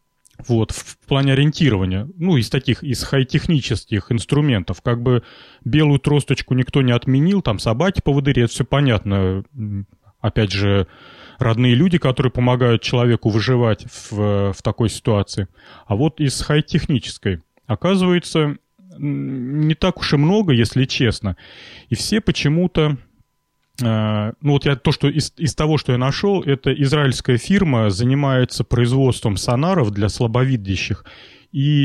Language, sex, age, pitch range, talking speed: Russian, male, 30-49, 115-145 Hz, 120 wpm